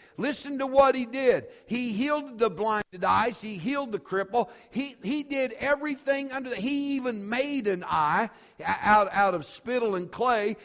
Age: 50-69